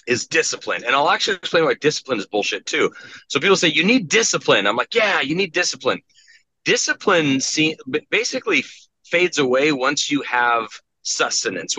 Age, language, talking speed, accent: 30-49, English, 160 wpm, American